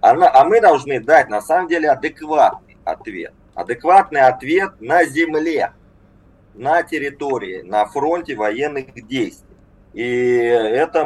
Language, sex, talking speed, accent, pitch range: Russian, male, 115 wpm, native, 105-155 Hz